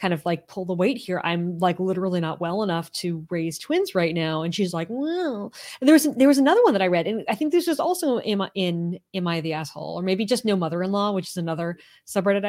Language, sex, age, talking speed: English, female, 20-39, 260 wpm